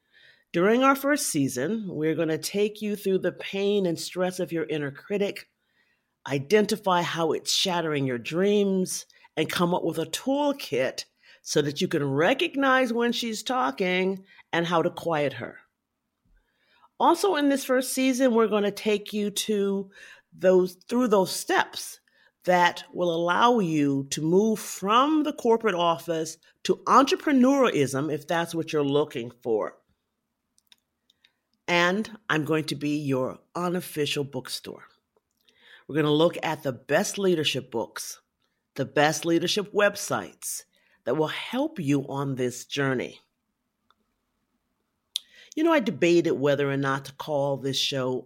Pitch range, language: 145-205 Hz, English